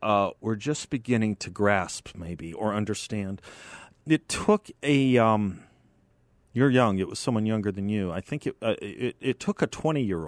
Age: 40-59